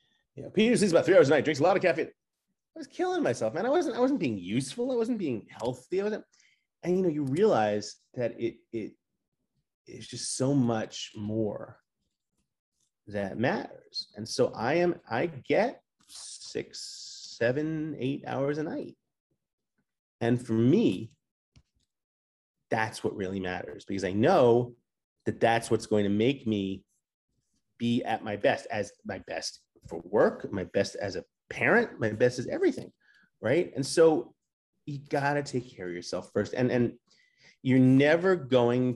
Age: 30-49